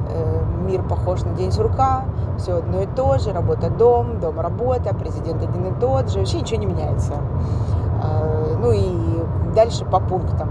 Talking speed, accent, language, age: 155 wpm, native, Russian, 30-49